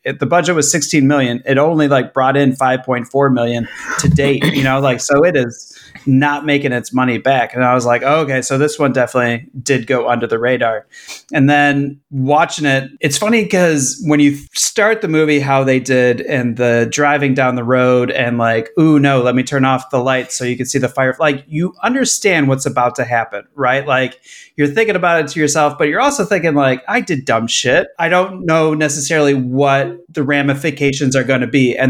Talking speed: 210 wpm